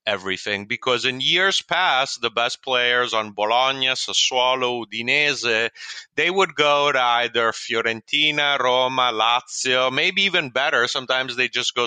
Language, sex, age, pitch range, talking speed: English, male, 30-49, 110-135 Hz, 135 wpm